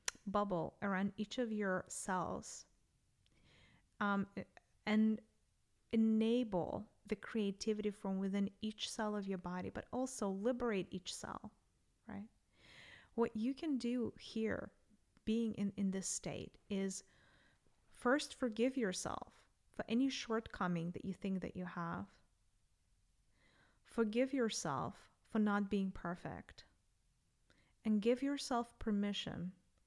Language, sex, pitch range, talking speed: English, female, 185-225 Hz, 115 wpm